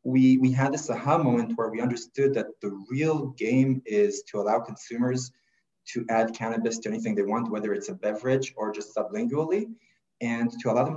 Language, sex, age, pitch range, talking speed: English, male, 30-49, 110-140 Hz, 190 wpm